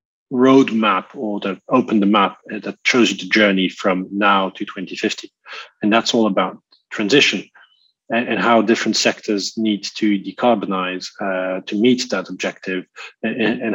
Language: English